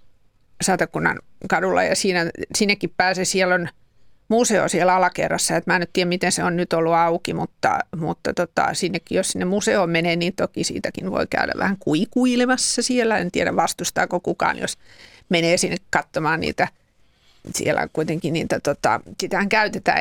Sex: female